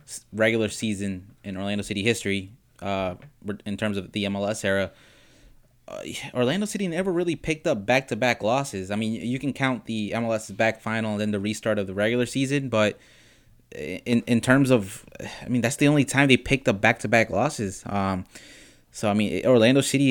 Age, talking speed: 20-39, 180 wpm